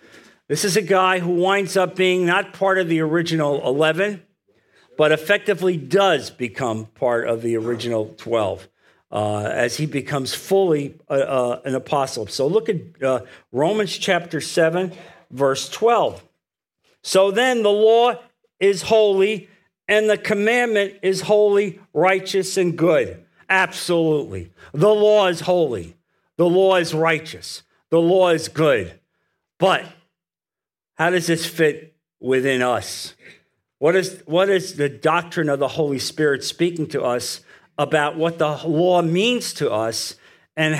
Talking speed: 135 wpm